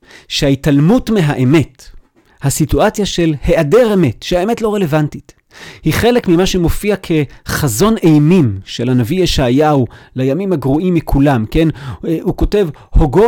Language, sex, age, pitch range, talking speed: Hebrew, male, 40-59, 125-165 Hz, 115 wpm